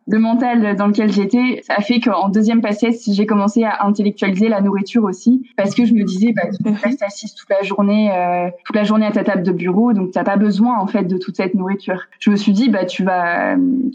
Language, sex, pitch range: French, female, 195-230 Hz